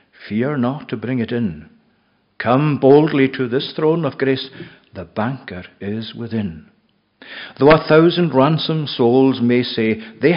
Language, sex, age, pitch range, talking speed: English, male, 60-79, 110-150 Hz, 145 wpm